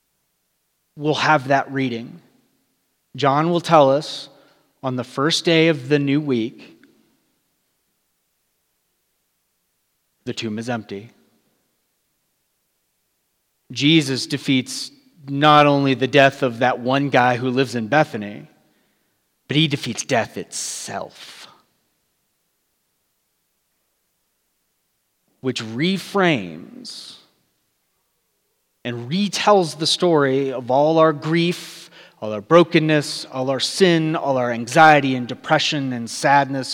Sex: male